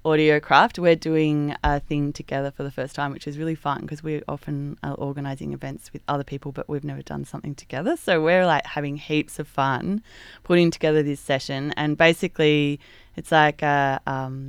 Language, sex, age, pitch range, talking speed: English, female, 20-39, 140-165 Hz, 190 wpm